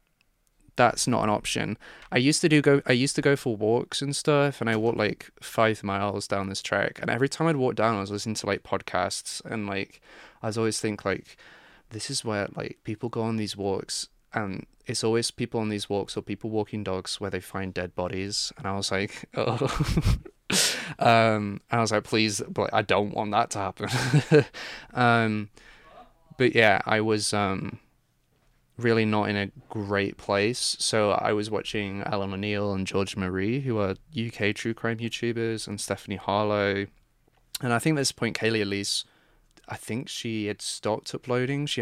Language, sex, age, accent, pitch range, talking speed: English, male, 20-39, British, 100-115 Hz, 190 wpm